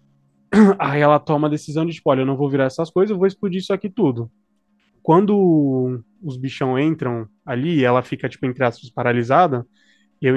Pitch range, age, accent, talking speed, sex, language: 130-165 Hz, 20-39, Brazilian, 185 wpm, male, Portuguese